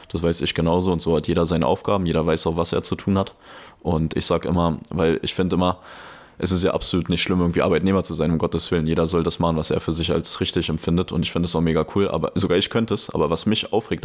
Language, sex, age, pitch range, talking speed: German, male, 20-39, 80-90 Hz, 280 wpm